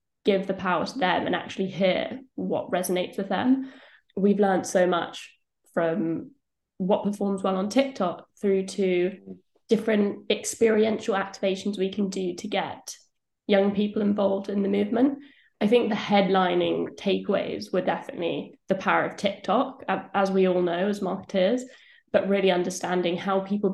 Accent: British